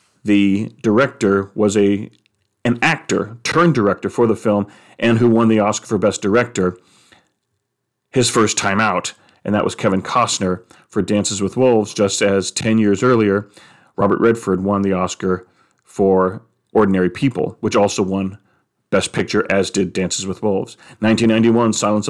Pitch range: 100-110 Hz